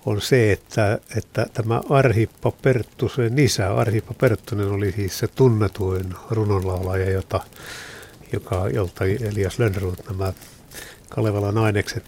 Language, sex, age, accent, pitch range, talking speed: Finnish, male, 60-79, native, 100-120 Hz, 115 wpm